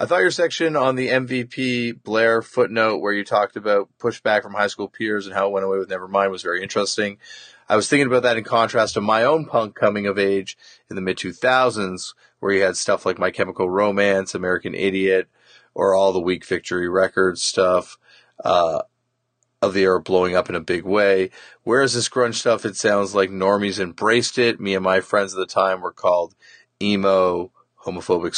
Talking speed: 195 wpm